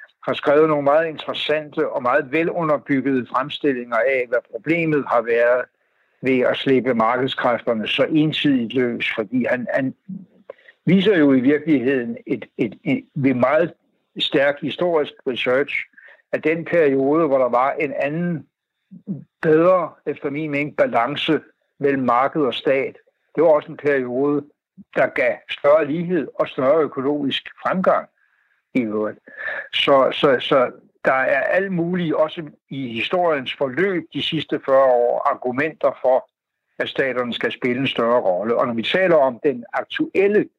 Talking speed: 140 wpm